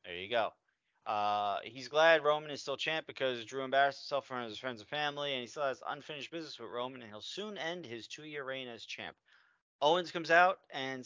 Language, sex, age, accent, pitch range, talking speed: English, male, 30-49, American, 115-145 Hz, 220 wpm